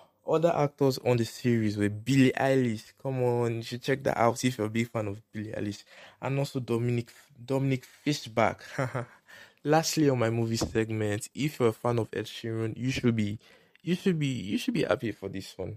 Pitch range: 110-130 Hz